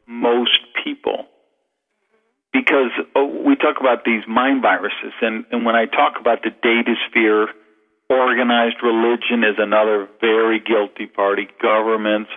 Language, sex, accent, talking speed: English, male, American, 125 wpm